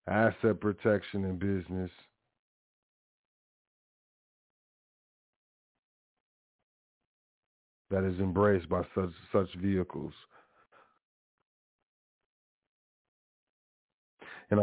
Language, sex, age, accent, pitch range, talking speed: English, male, 50-69, American, 90-115 Hz, 50 wpm